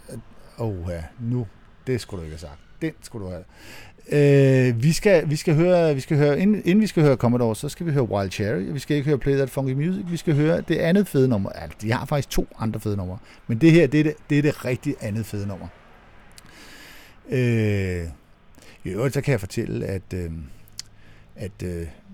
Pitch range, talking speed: 95-135 Hz, 215 wpm